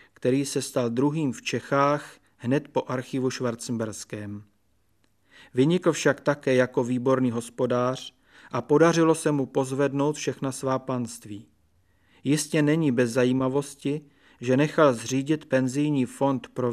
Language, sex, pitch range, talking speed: Czech, male, 120-140 Hz, 120 wpm